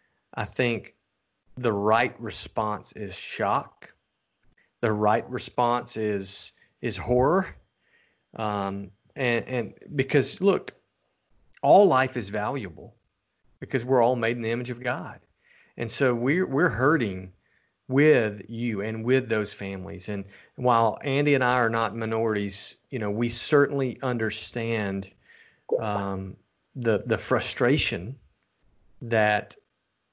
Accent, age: American, 40-59